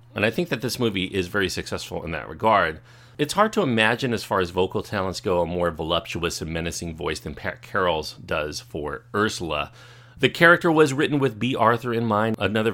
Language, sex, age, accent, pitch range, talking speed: English, male, 40-59, American, 90-120 Hz, 205 wpm